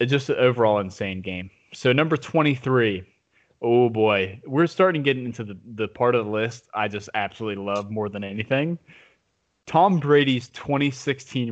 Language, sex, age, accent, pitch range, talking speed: English, male, 20-39, American, 105-135 Hz, 155 wpm